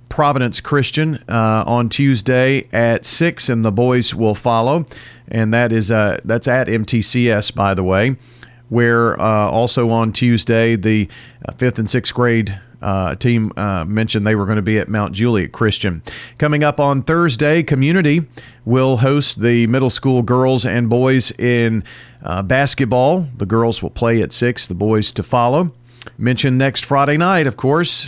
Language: English